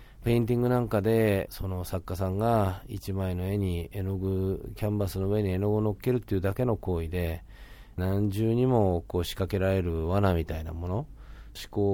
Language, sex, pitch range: Japanese, male, 90-115 Hz